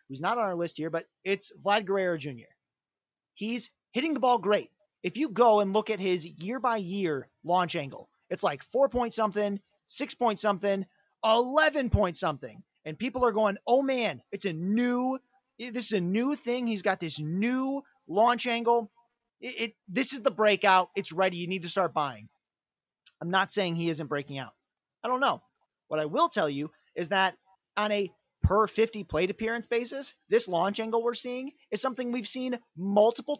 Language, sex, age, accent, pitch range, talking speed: English, male, 30-49, American, 185-245 Hz, 175 wpm